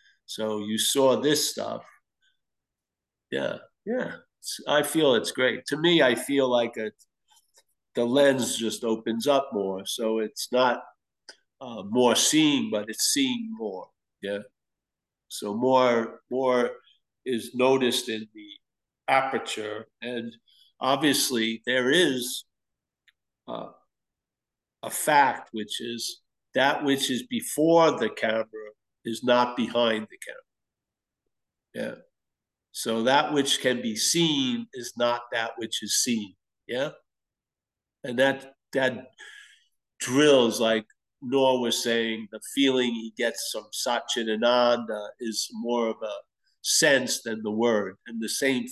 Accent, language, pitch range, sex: American, English, 110-135 Hz, male